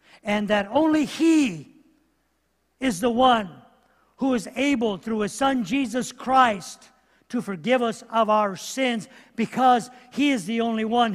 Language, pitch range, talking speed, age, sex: English, 195-245 Hz, 145 wpm, 50-69, male